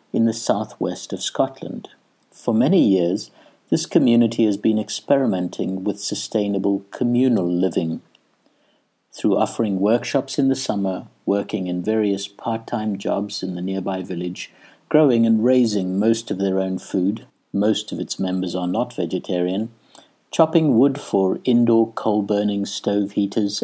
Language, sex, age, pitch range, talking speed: English, male, 60-79, 95-125 Hz, 135 wpm